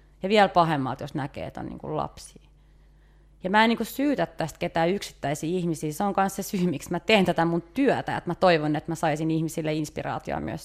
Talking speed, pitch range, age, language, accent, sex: 205 wpm, 155-180 Hz, 30-49, English, Finnish, female